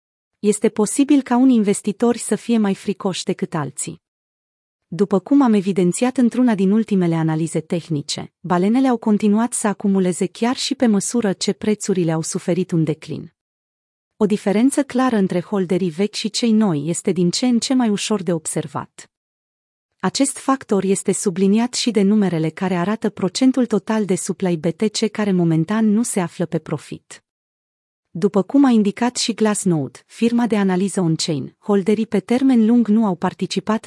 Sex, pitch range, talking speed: female, 180-225 Hz, 160 wpm